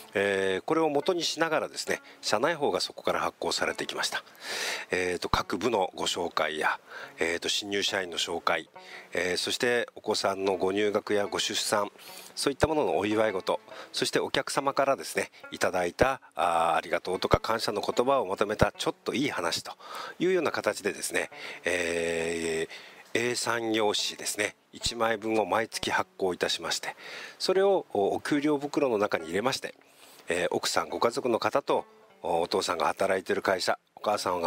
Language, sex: English, male